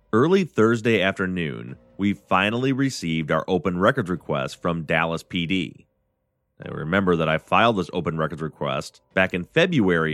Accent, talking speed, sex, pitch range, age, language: American, 150 wpm, male, 80-110 Hz, 30-49, English